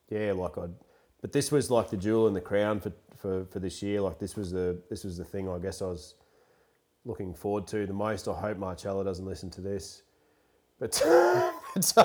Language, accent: English, Australian